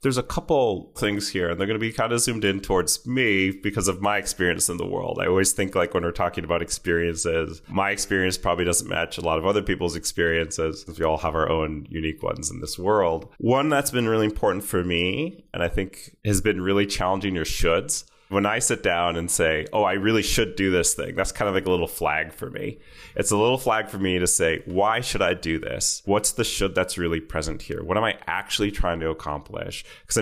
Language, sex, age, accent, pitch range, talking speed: English, male, 30-49, American, 85-105 Hz, 235 wpm